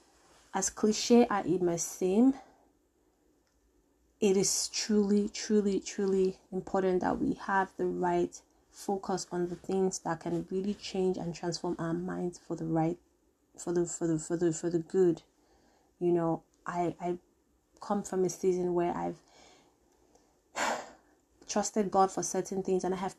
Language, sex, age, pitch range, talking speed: English, female, 20-39, 170-195 Hz, 155 wpm